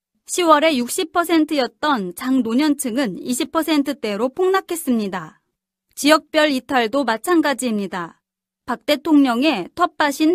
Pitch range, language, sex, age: 240-315 Hz, Korean, female, 30-49